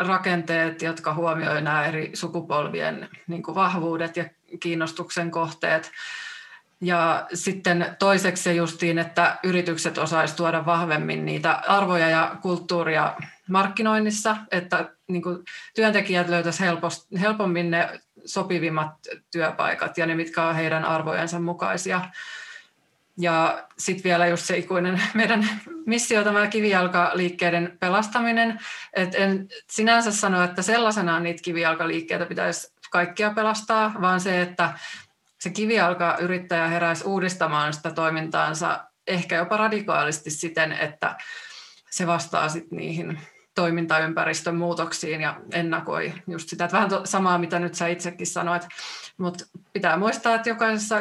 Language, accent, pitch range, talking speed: Finnish, native, 165-195 Hz, 115 wpm